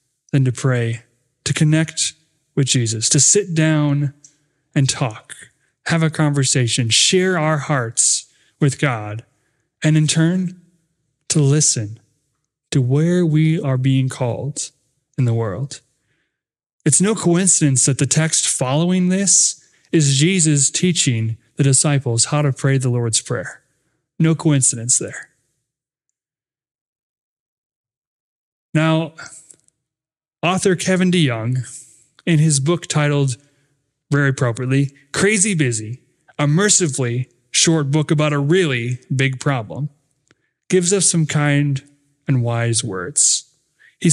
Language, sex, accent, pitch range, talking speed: English, male, American, 135-165 Hz, 115 wpm